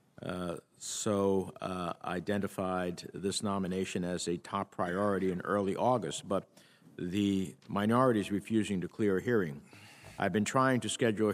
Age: 50-69